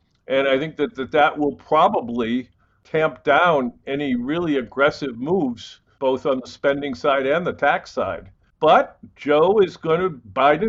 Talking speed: 165 wpm